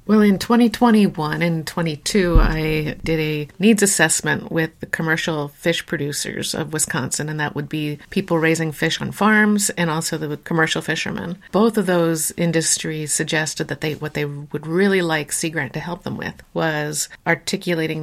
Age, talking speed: 50-69, 170 wpm